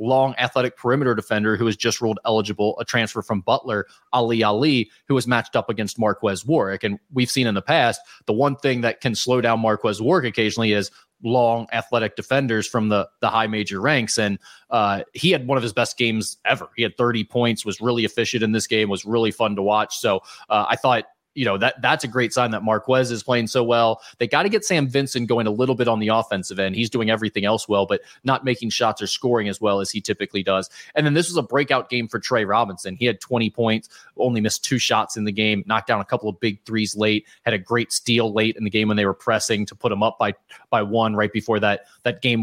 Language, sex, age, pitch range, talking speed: English, male, 30-49, 110-125 Hz, 245 wpm